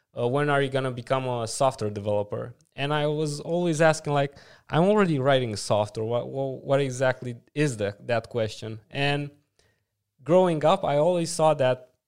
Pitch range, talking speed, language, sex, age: 125-155 Hz, 170 wpm, Romanian, male, 20-39